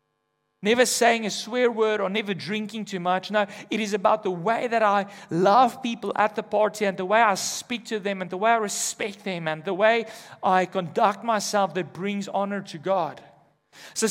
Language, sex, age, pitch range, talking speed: English, male, 30-49, 135-210 Hz, 205 wpm